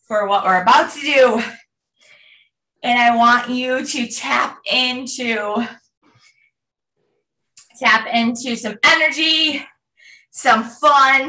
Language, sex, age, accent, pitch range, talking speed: English, female, 20-39, American, 225-330 Hz, 100 wpm